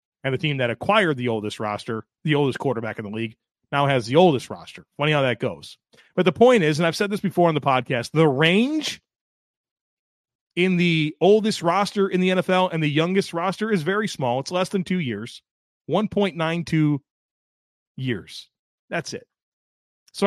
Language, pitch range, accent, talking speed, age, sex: English, 130-180 Hz, American, 180 wpm, 30-49, male